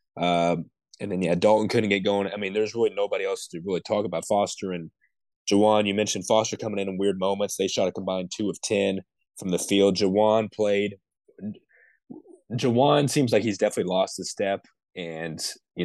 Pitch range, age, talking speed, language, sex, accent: 95-115 Hz, 20-39, 195 wpm, English, male, American